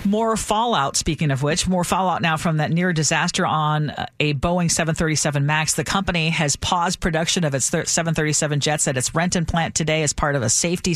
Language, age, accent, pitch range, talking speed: English, 40-59, American, 155-190 Hz, 210 wpm